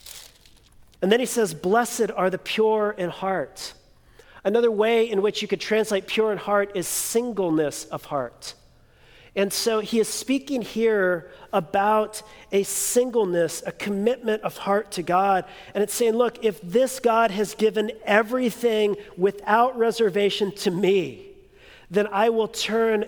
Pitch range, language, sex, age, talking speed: 190-230 Hz, English, male, 40-59, 150 wpm